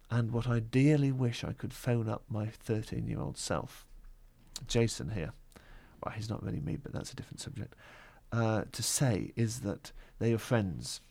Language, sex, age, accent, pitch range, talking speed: English, male, 40-59, British, 110-135 Hz, 175 wpm